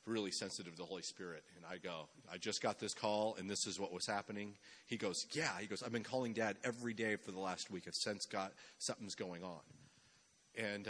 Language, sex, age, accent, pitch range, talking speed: English, male, 40-59, American, 95-120 Hz, 230 wpm